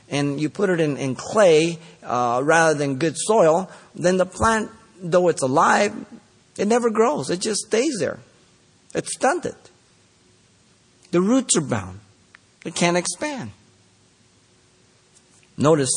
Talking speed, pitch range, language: 130 wpm, 140-200 Hz, English